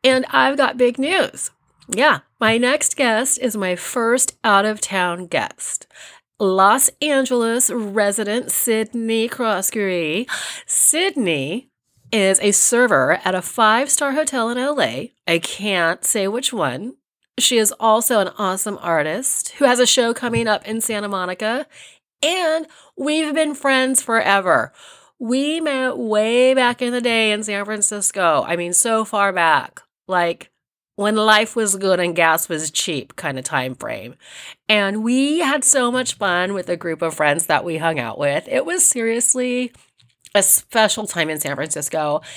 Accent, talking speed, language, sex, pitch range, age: American, 150 wpm, English, female, 180-250 Hz, 30-49